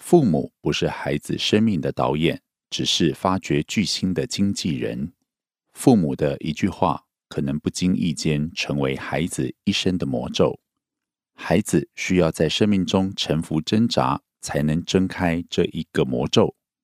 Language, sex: Korean, male